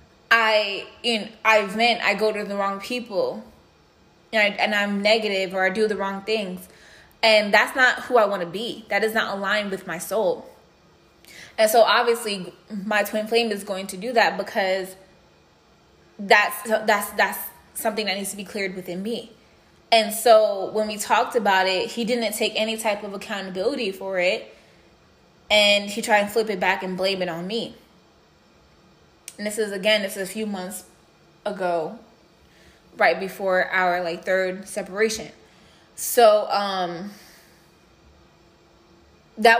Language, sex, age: English, female, 20-39